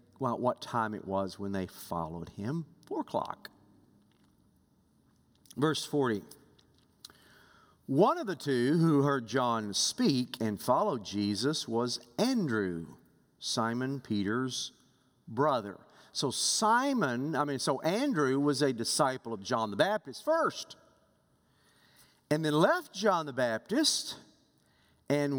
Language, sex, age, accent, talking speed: English, male, 50-69, American, 120 wpm